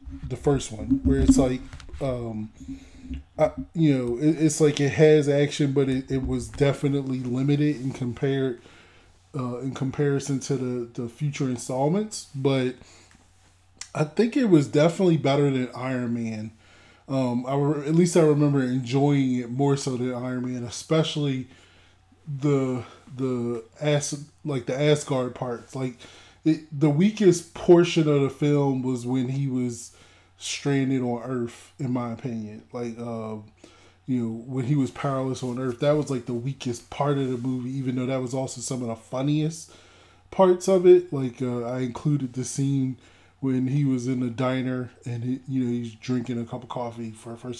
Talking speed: 175 wpm